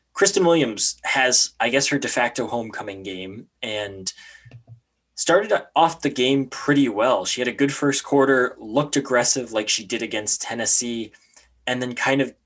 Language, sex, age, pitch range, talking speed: English, male, 20-39, 110-135 Hz, 165 wpm